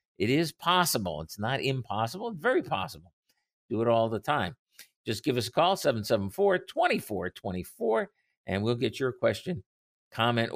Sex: male